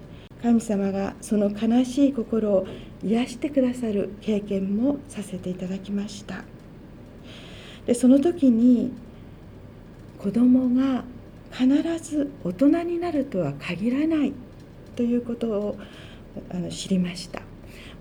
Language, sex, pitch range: Japanese, female, 195-255 Hz